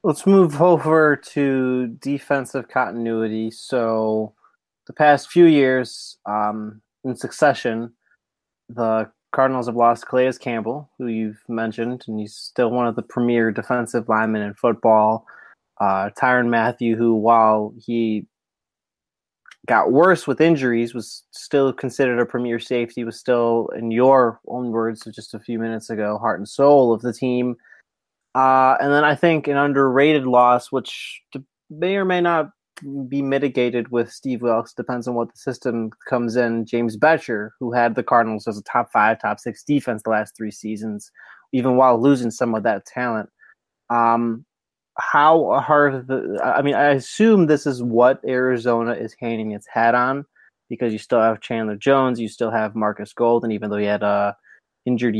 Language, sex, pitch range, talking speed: English, male, 115-130 Hz, 165 wpm